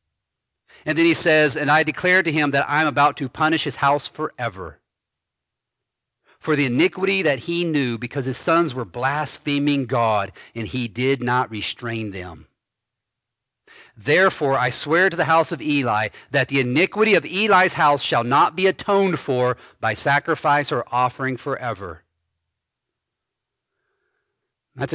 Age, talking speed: 50-69, 145 wpm